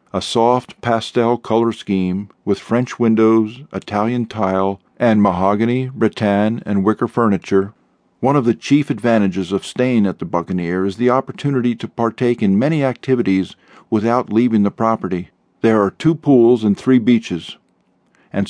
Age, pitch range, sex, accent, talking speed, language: 50-69, 100-125 Hz, male, American, 150 wpm, English